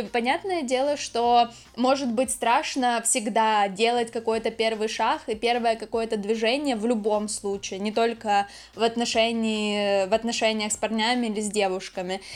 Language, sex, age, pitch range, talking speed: Ukrainian, female, 10-29, 220-255 Hz, 135 wpm